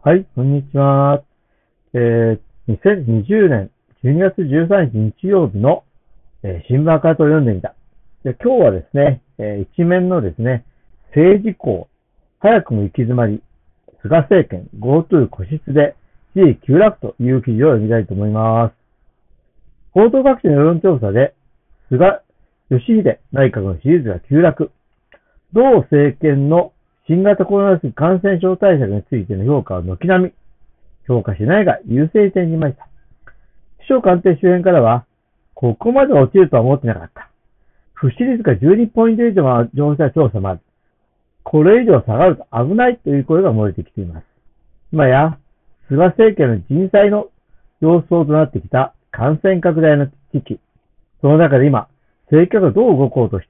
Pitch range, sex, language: 115-185 Hz, male, Japanese